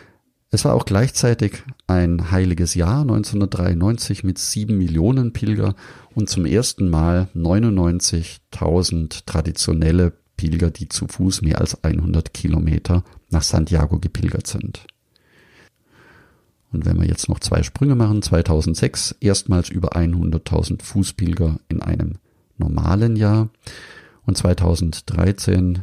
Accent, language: German, German